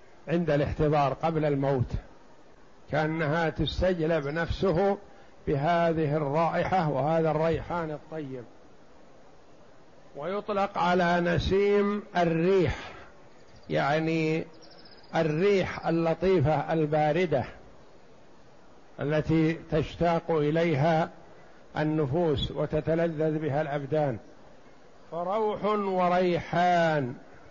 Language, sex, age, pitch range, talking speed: Arabic, male, 60-79, 150-175 Hz, 65 wpm